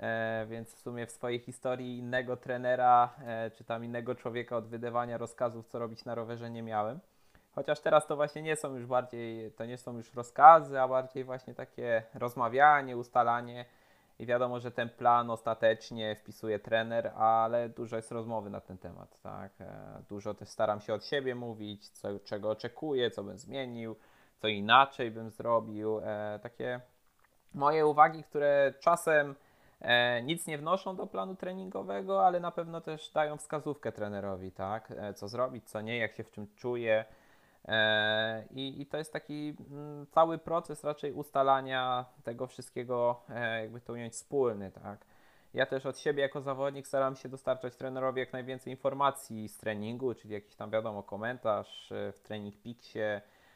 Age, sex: 20-39, male